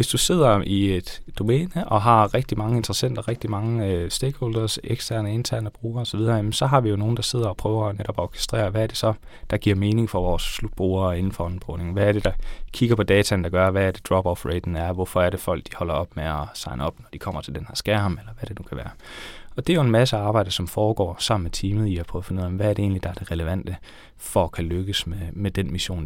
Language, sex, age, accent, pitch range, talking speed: Danish, male, 20-39, native, 90-110 Hz, 265 wpm